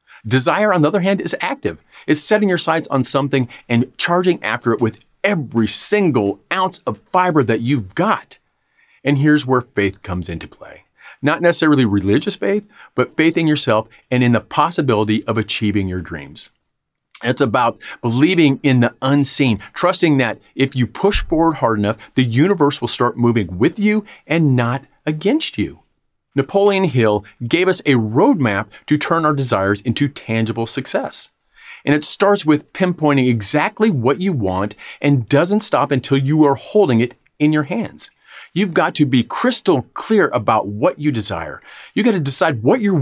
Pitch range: 115-165 Hz